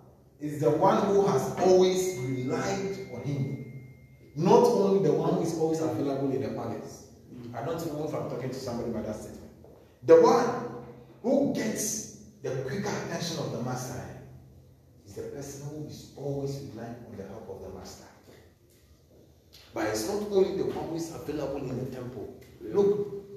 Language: English